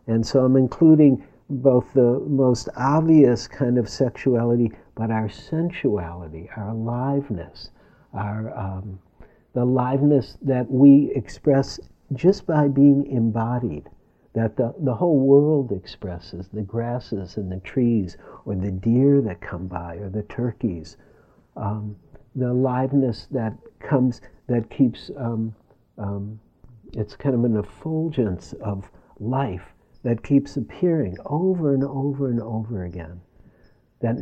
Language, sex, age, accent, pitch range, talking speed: English, male, 60-79, American, 105-140 Hz, 130 wpm